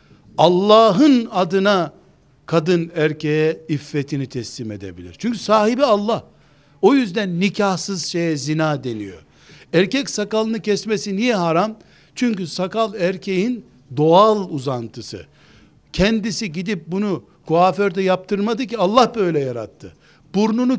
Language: Turkish